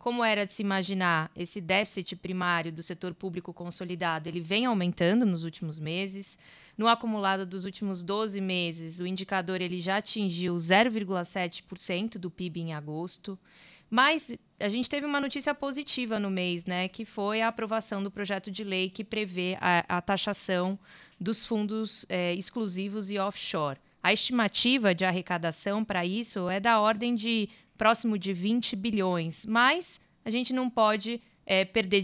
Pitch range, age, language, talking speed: 180-220 Hz, 20-39, Portuguese, 155 wpm